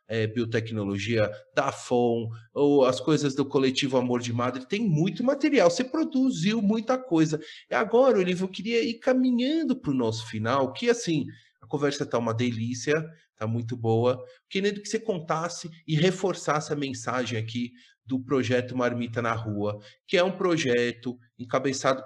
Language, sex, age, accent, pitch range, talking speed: Portuguese, male, 30-49, Brazilian, 125-170 Hz, 160 wpm